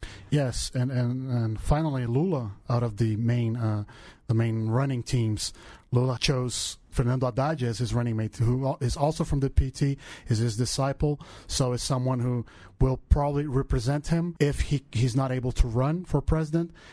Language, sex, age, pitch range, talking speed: English, male, 40-59, 120-145 Hz, 175 wpm